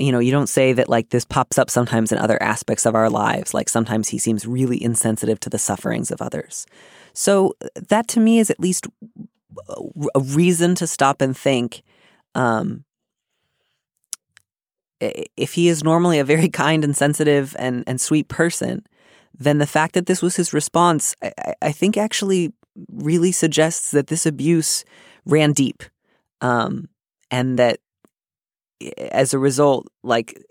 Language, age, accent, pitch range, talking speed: English, 30-49, American, 115-150 Hz, 160 wpm